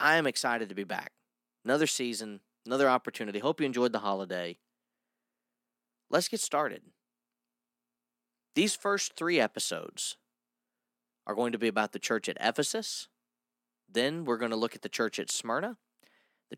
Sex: male